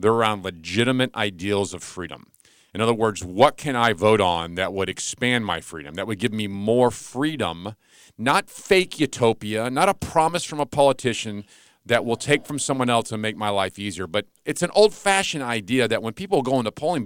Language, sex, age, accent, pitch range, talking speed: English, male, 40-59, American, 105-150 Hz, 200 wpm